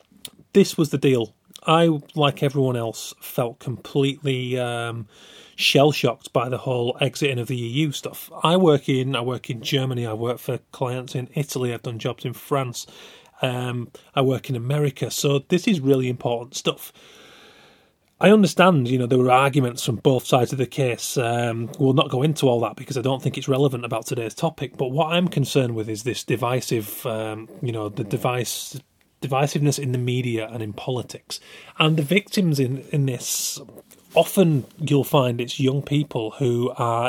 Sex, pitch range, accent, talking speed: male, 125-150 Hz, British, 180 wpm